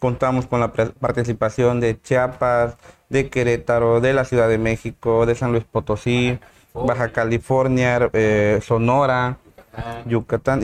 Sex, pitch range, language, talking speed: male, 115-140 Hz, Spanish, 125 wpm